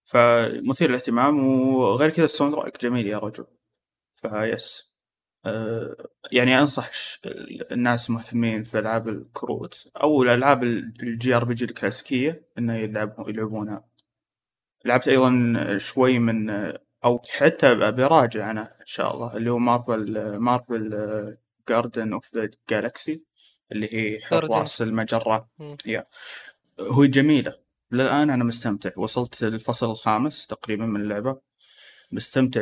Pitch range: 110-130 Hz